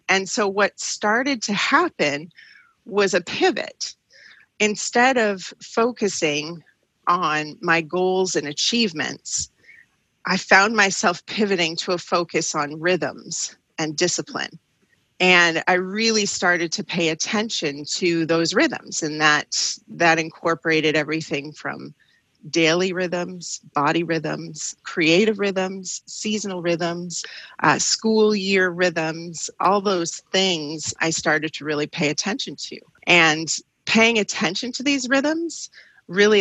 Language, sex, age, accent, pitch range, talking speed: English, female, 40-59, American, 160-200 Hz, 120 wpm